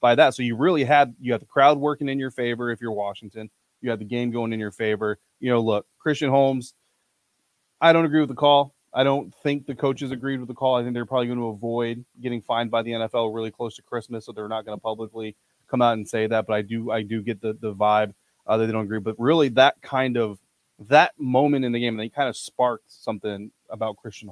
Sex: male